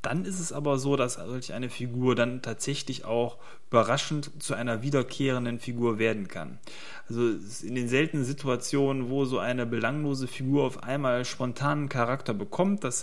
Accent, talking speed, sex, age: German, 155 wpm, male, 30-49